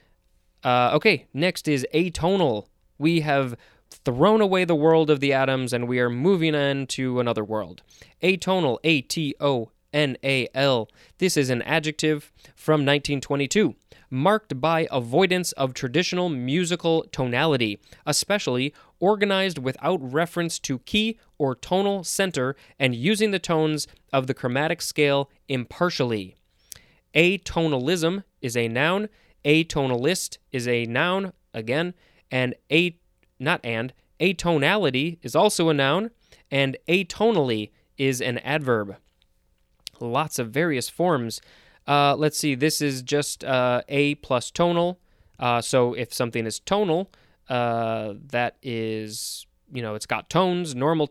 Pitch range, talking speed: 125-165 Hz, 125 wpm